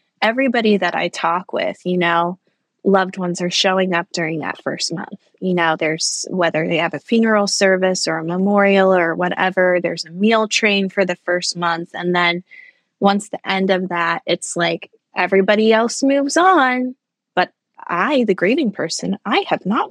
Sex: female